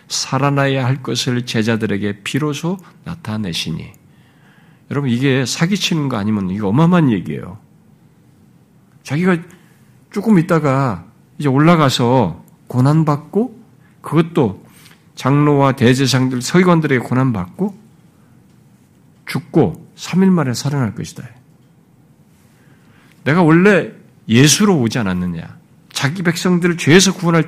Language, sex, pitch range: Korean, male, 120-175 Hz